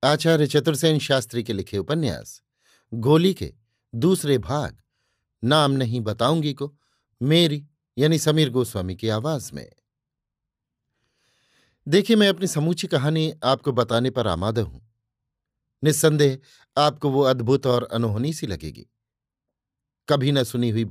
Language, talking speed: Hindi, 125 wpm